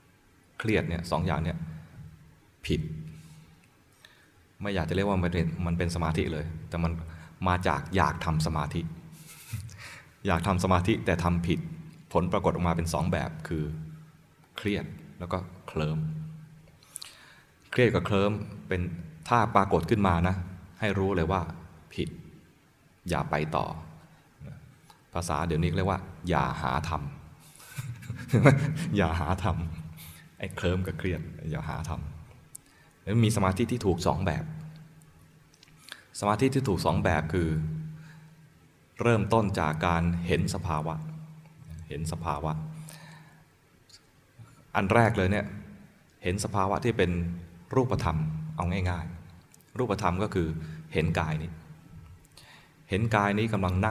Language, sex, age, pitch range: Thai, male, 20-39, 85-115 Hz